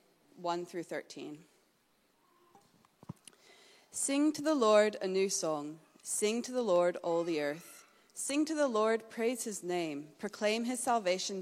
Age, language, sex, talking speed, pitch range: 30-49, English, female, 140 wpm, 175-220 Hz